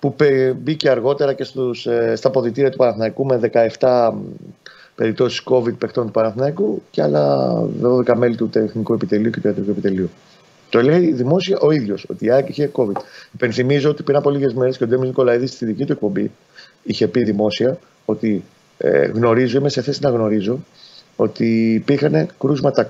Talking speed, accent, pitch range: 170 wpm, native, 115-155 Hz